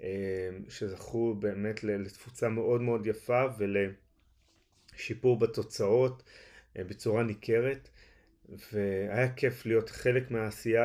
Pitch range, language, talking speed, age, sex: 100-120 Hz, Hebrew, 85 wpm, 30-49, male